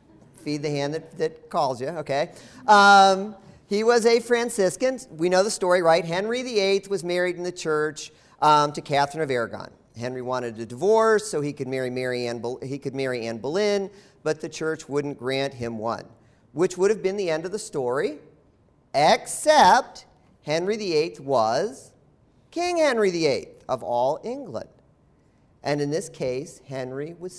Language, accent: English, American